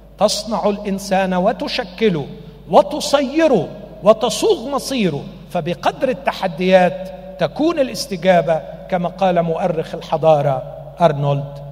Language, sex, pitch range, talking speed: Arabic, male, 155-195 Hz, 75 wpm